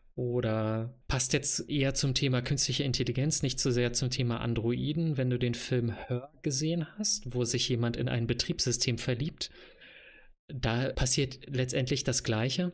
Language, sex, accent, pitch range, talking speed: German, male, German, 120-145 Hz, 155 wpm